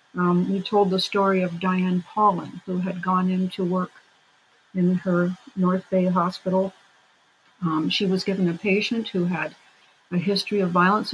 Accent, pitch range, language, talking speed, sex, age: American, 175-210 Hz, English, 160 wpm, female, 50-69